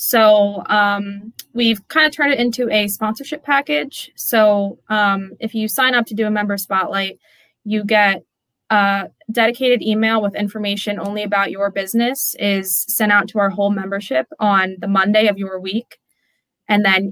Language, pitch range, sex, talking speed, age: English, 190-215 Hz, female, 170 wpm, 20-39